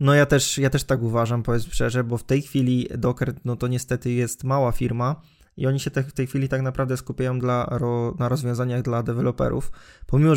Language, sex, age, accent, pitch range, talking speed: Polish, male, 20-39, native, 120-140 Hz, 215 wpm